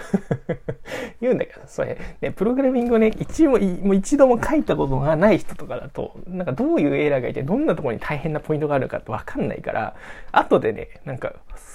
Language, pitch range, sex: Japanese, 130-215 Hz, male